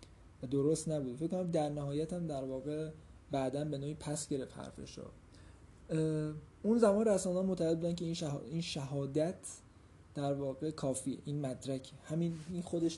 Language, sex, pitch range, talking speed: Persian, male, 130-160 Hz, 150 wpm